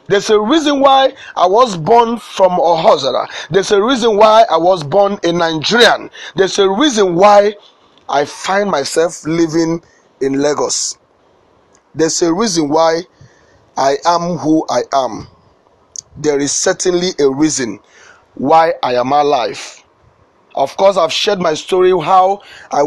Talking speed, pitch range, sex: 140 wpm, 150-205 Hz, male